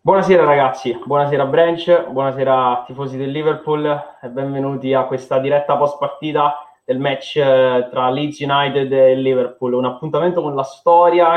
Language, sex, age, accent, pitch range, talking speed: Italian, male, 20-39, native, 120-140 Hz, 145 wpm